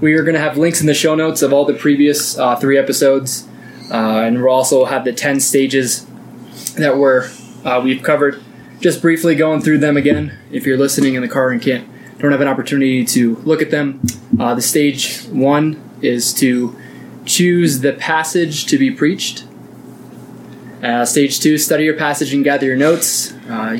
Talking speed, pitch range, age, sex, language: 190 wpm, 130-150 Hz, 20-39, male, English